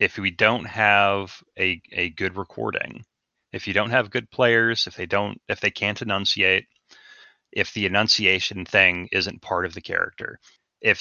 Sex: male